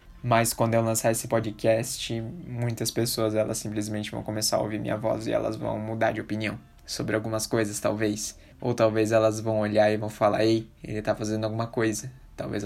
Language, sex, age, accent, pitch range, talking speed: Portuguese, male, 20-39, Brazilian, 115-145 Hz, 195 wpm